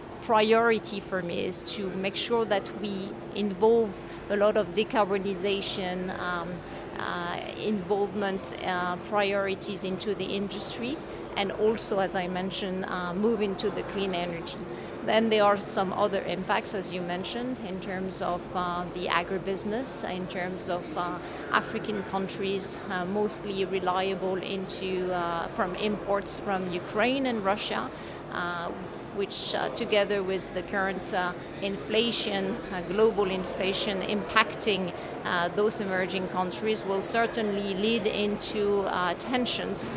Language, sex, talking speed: English, female, 130 wpm